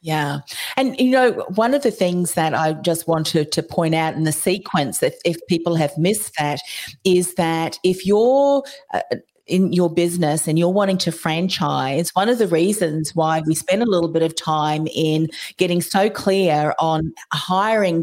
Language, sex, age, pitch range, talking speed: English, female, 40-59, 165-195 Hz, 185 wpm